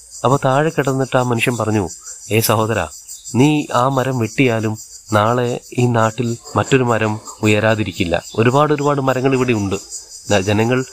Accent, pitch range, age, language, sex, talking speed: native, 105-125 Hz, 30-49, Malayalam, male, 125 wpm